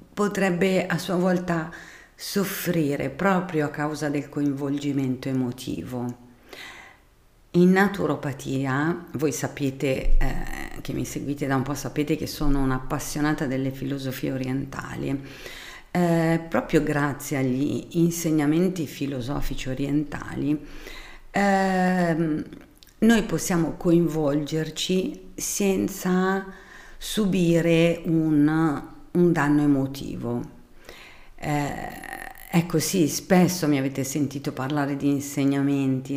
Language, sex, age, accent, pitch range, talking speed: Italian, female, 50-69, native, 135-170 Hz, 95 wpm